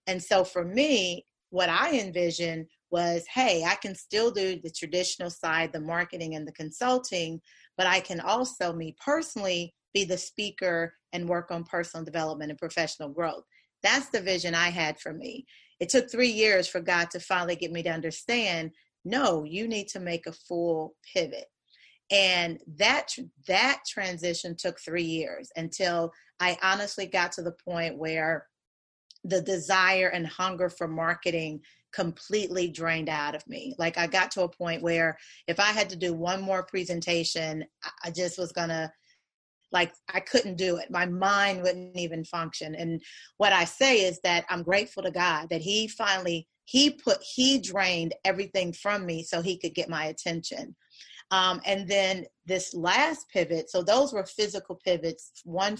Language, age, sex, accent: English, 30-49, female, American